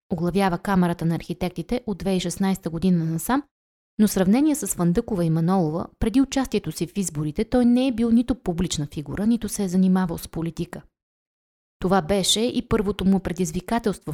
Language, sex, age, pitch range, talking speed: Bulgarian, female, 20-39, 165-210 Hz, 165 wpm